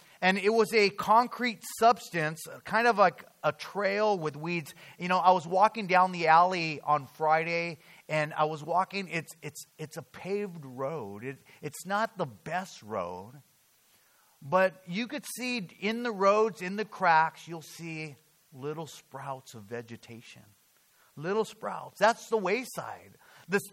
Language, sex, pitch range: English, male, 155-210 Hz